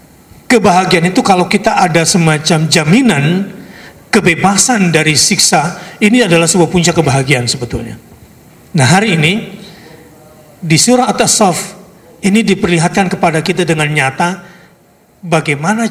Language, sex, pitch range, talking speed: Indonesian, male, 140-190 Hz, 115 wpm